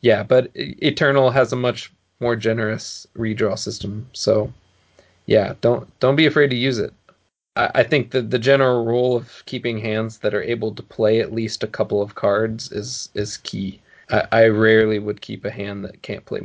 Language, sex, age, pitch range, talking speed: English, male, 20-39, 110-130 Hz, 195 wpm